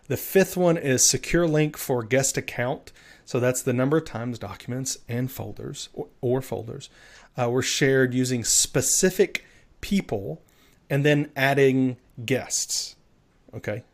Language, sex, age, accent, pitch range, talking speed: English, male, 30-49, American, 120-155 Hz, 140 wpm